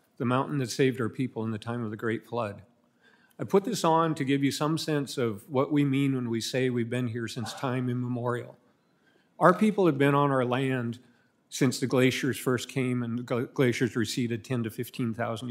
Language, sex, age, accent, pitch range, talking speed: English, male, 50-69, American, 125-145 Hz, 210 wpm